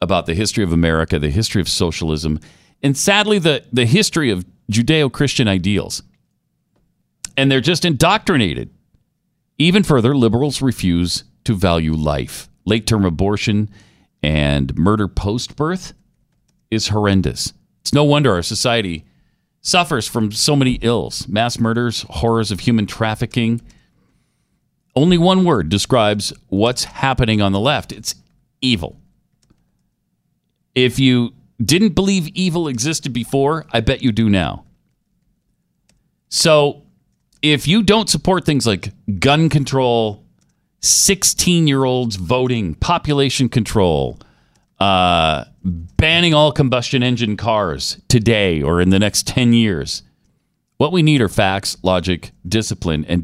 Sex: male